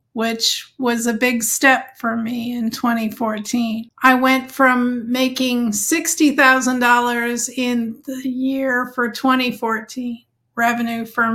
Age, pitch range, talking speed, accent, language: 50-69, 240-270 Hz, 110 wpm, American, English